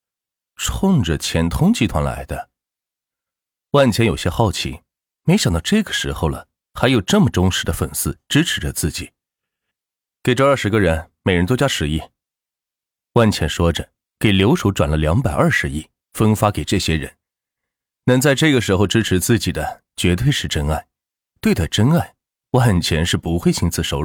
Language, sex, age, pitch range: Chinese, male, 30-49, 85-125 Hz